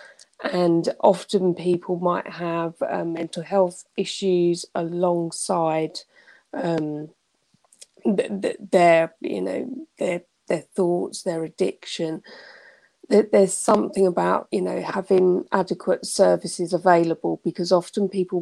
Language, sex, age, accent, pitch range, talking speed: English, female, 30-49, British, 165-185 Hz, 100 wpm